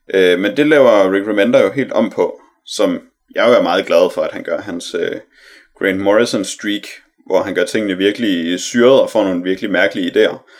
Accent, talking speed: native, 190 wpm